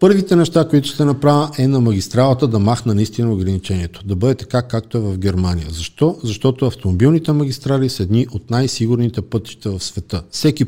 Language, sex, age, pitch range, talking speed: Bulgarian, male, 50-69, 100-135 Hz, 175 wpm